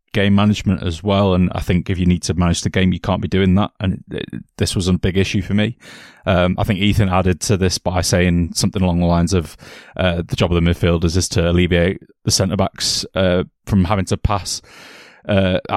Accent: British